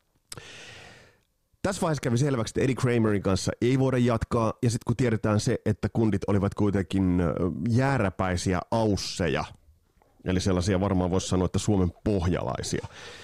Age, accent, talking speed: 30-49, native, 135 wpm